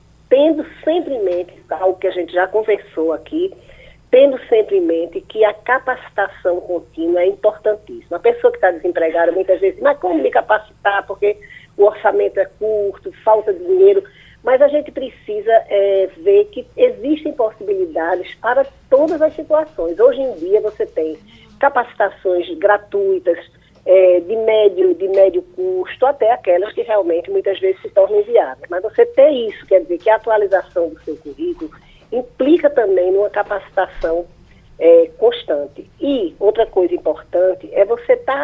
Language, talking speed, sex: Portuguese, 155 wpm, female